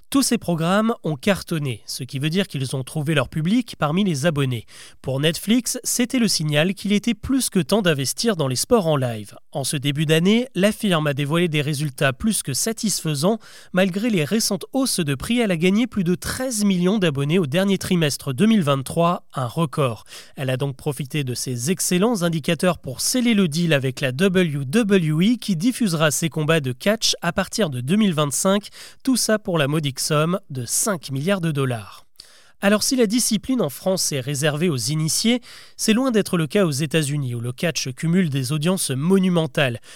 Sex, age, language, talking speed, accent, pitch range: male, 30-49, French, 190 wpm, French, 145-205 Hz